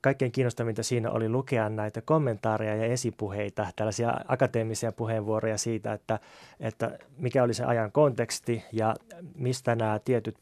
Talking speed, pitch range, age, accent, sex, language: 140 wpm, 110-125 Hz, 20-39, native, male, Finnish